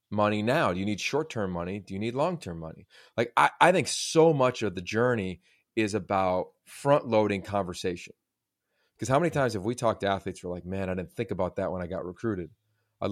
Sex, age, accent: male, 30-49, American